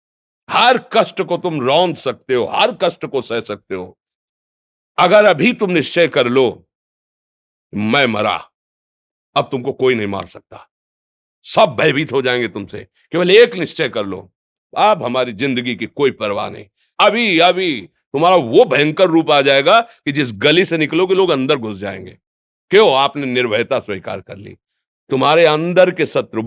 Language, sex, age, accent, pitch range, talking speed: Hindi, male, 50-69, native, 110-165 Hz, 160 wpm